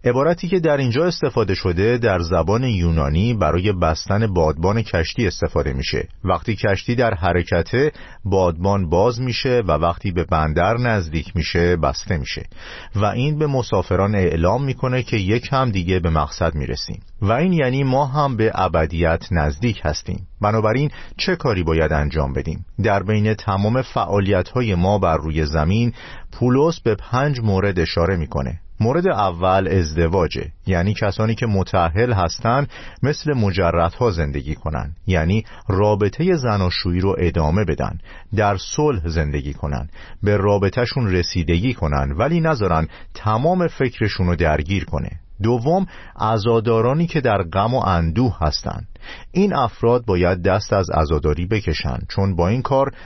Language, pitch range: Persian, 85-120 Hz